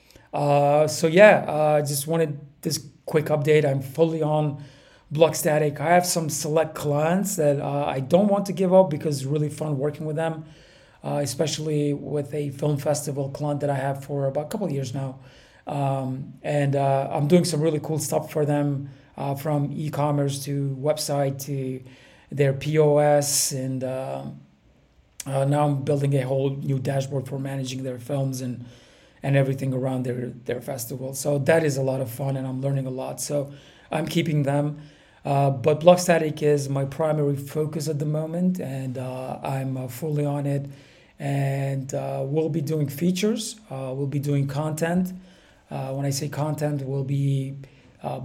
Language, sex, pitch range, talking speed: English, male, 135-155 Hz, 175 wpm